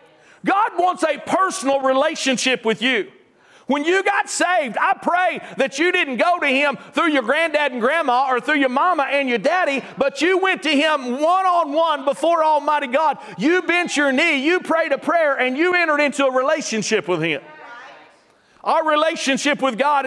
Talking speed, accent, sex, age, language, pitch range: 180 wpm, American, male, 40-59, English, 235-320 Hz